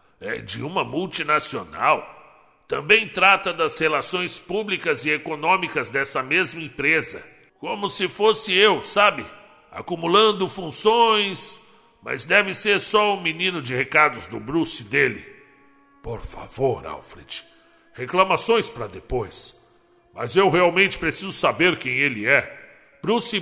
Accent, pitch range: Brazilian, 150-195 Hz